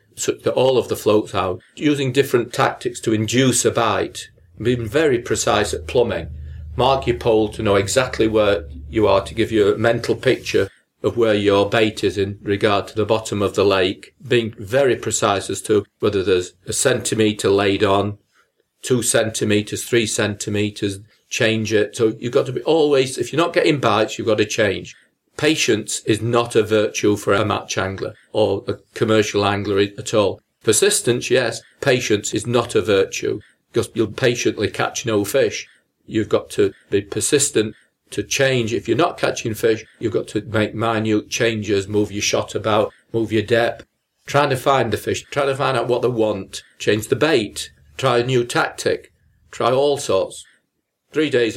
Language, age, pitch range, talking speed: English, 40-59, 105-135 Hz, 180 wpm